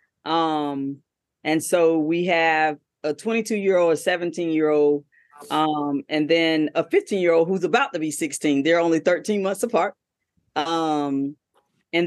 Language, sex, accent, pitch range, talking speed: English, female, American, 165-215 Hz, 160 wpm